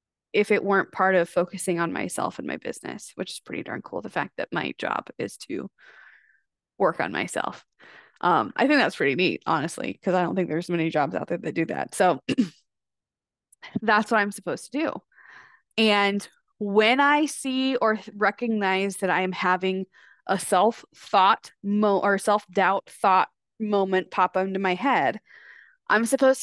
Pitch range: 175-225 Hz